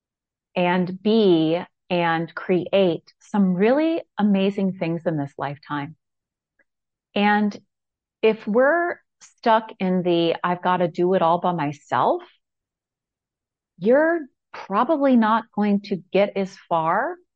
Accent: American